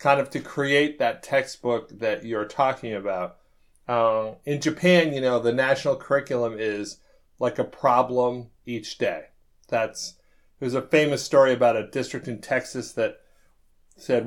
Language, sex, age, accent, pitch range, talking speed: English, male, 40-59, American, 120-155 Hz, 150 wpm